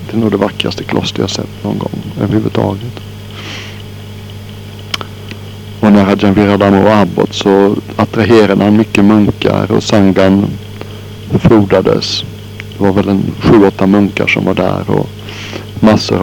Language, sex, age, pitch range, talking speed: Swedish, male, 60-79, 100-105 Hz, 120 wpm